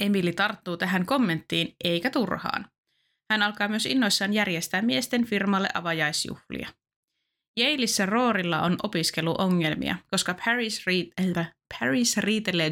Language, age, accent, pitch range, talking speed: Finnish, 20-39, native, 165-215 Hz, 115 wpm